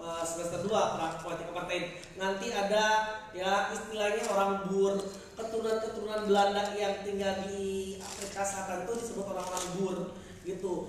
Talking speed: 110 wpm